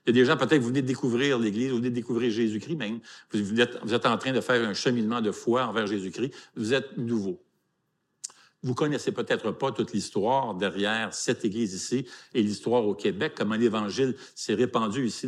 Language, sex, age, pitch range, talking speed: French, male, 50-69, 120-155 Hz, 215 wpm